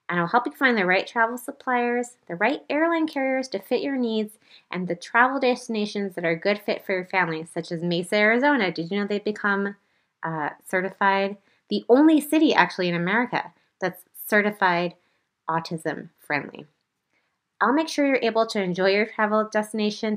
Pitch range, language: 175-240 Hz, English